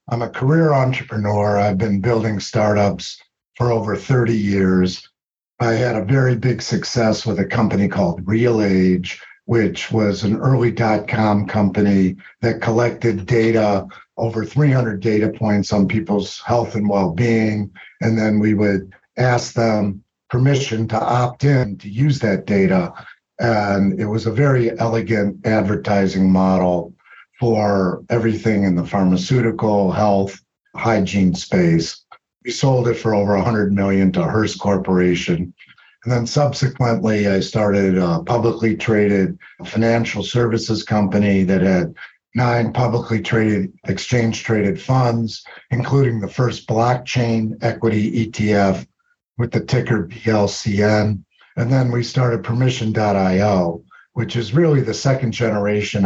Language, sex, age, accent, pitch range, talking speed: English, male, 50-69, American, 100-120 Hz, 125 wpm